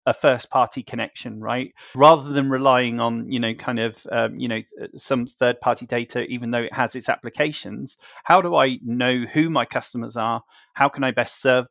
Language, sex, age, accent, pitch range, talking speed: English, male, 30-49, British, 120-135 Hz, 190 wpm